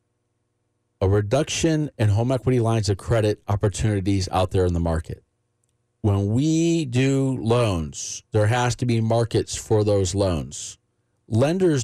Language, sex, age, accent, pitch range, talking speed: English, male, 40-59, American, 100-120 Hz, 135 wpm